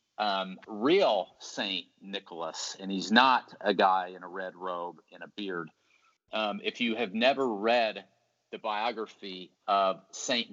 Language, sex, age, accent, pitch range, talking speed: English, male, 40-59, American, 95-115 Hz, 150 wpm